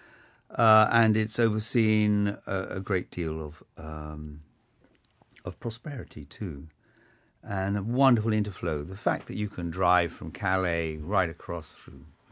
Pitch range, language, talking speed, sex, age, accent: 85-110 Hz, English, 135 wpm, male, 50-69, British